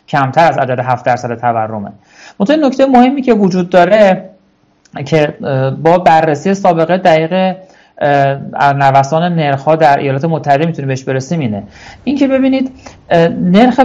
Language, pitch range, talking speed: Persian, 135-195 Hz, 135 wpm